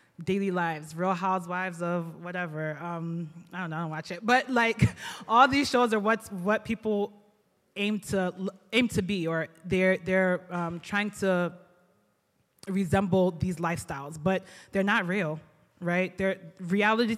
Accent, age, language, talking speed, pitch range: American, 20-39, English, 155 wpm, 175-200 Hz